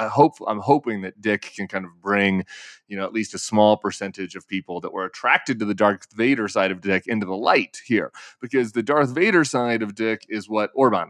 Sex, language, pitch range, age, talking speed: male, English, 100-120 Hz, 30-49, 230 wpm